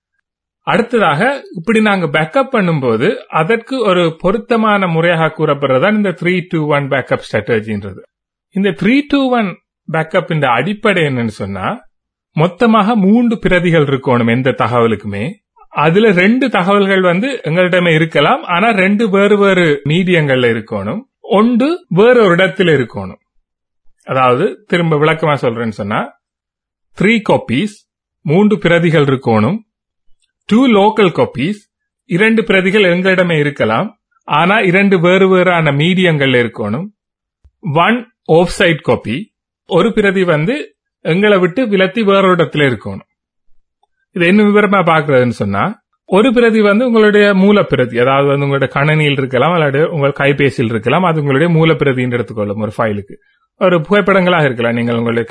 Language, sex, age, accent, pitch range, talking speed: Tamil, male, 30-49, native, 135-210 Hz, 120 wpm